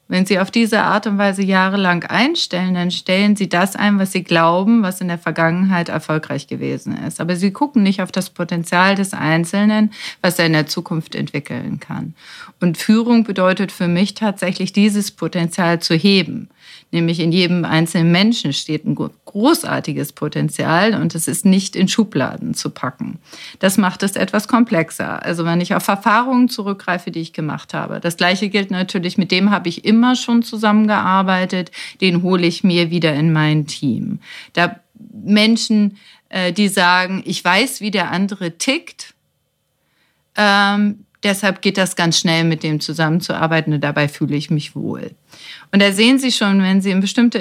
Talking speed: 170 wpm